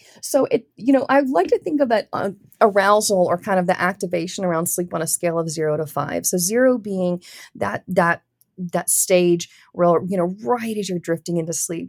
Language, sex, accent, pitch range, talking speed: English, female, American, 160-195 Hz, 205 wpm